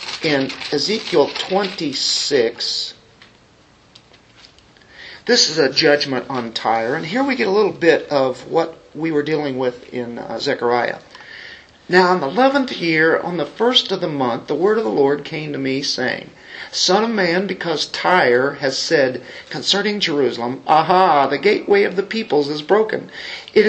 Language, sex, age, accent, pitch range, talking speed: English, male, 50-69, American, 140-225 Hz, 160 wpm